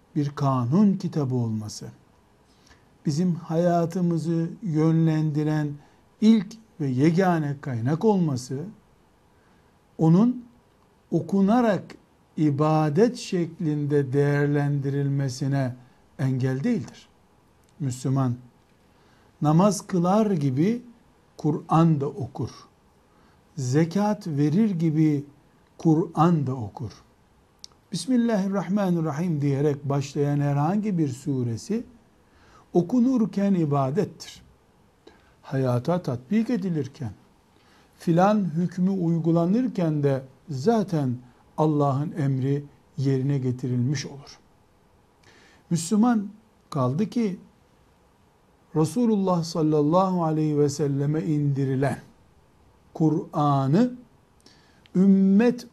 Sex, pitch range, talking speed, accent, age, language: male, 140-185 Hz, 70 wpm, native, 60-79, Turkish